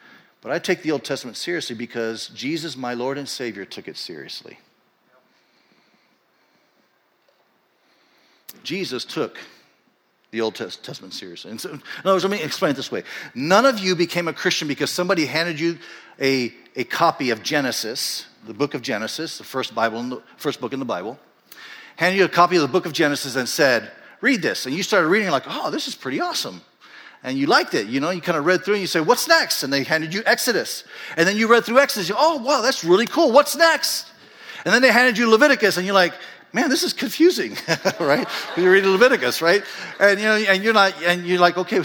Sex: male